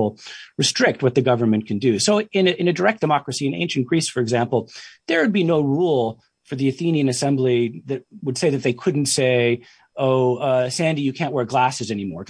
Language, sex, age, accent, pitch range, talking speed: English, male, 40-59, American, 115-160 Hz, 200 wpm